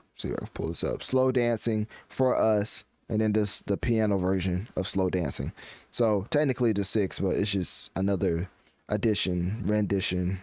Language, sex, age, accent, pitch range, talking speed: English, male, 20-39, American, 95-120 Hz, 175 wpm